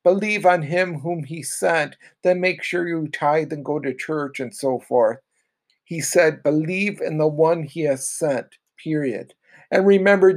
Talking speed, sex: 175 wpm, male